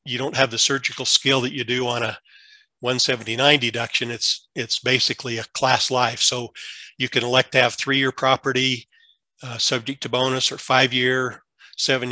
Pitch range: 120-130 Hz